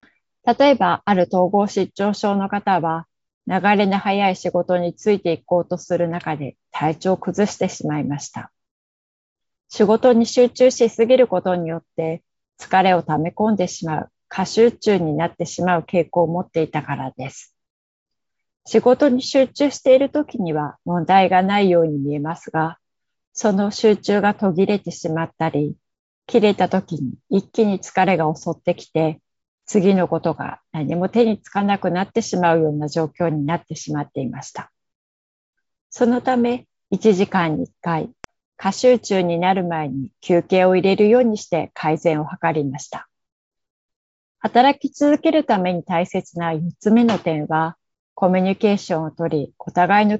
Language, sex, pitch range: Japanese, female, 165-205 Hz